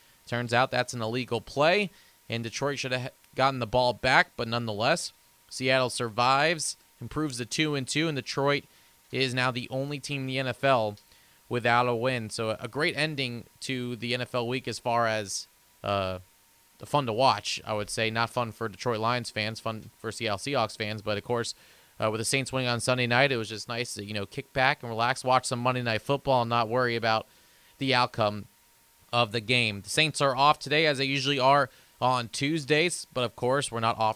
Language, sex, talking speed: English, male, 210 wpm